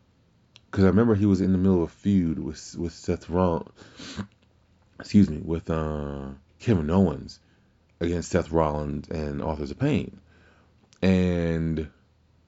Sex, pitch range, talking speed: male, 80-95 Hz, 140 wpm